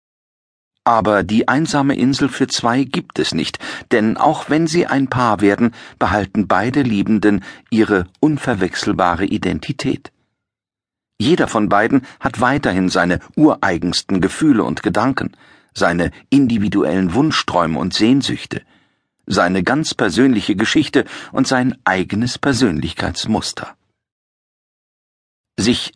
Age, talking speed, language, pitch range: 50-69, 105 wpm, German, 100-140 Hz